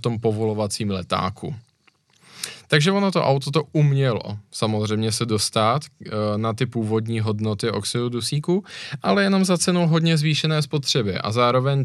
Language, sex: Czech, male